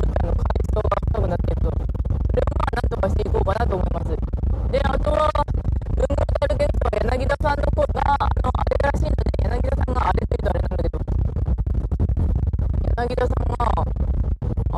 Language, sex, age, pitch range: Japanese, female, 20-39, 80-100 Hz